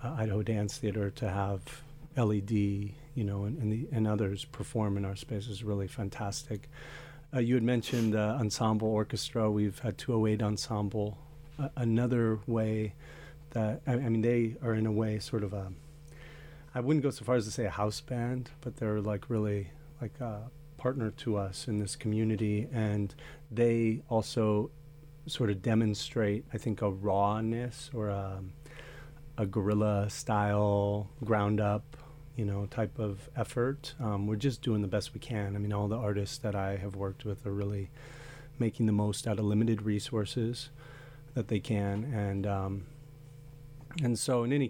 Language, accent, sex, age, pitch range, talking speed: English, American, male, 40-59, 105-135 Hz, 170 wpm